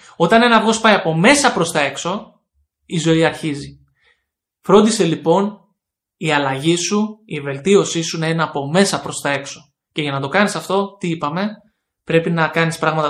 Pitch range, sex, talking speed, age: 150-185 Hz, male, 180 wpm, 20-39